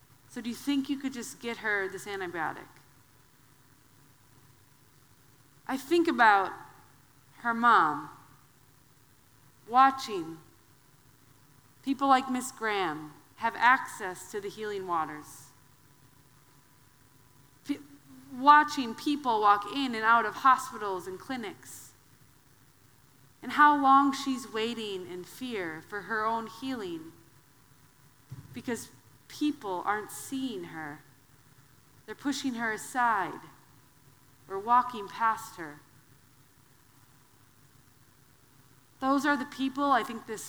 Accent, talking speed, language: American, 100 wpm, English